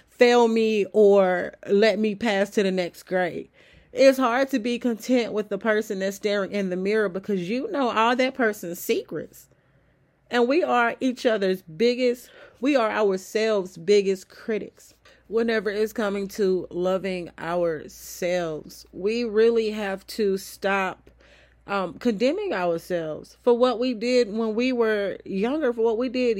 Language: English